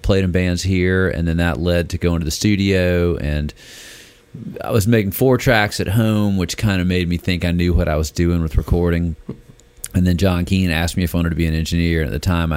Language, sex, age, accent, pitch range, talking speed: English, male, 40-59, American, 80-90 Hz, 245 wpm